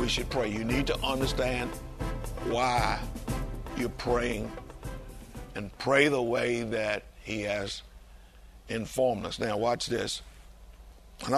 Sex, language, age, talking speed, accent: male, English, 60-79, 120 wpm, American